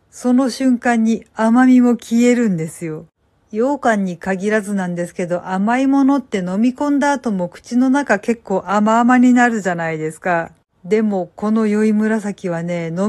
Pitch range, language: 185-250 Hz, Japanese